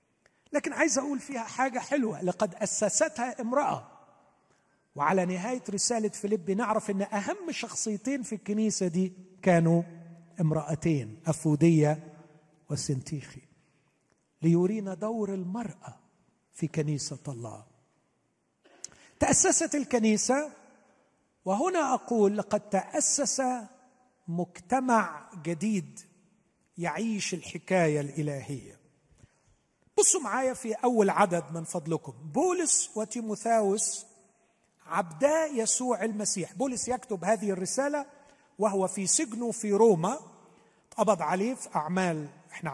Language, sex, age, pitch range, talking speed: Arabic, male, 50-69, 170-245 Hz, 95 wpm